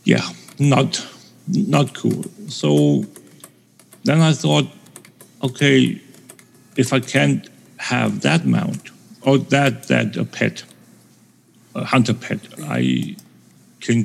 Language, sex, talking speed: English, male, 105 wpm